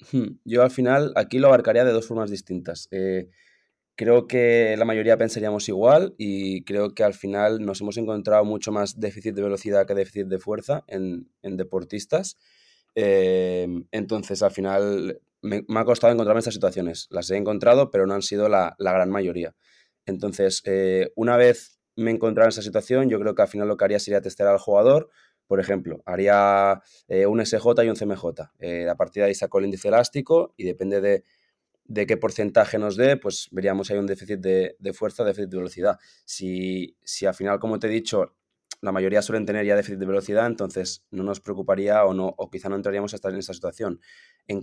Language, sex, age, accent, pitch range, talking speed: Spanish, male, 20-39, Spanish, 95-110 Hz, 200 wpm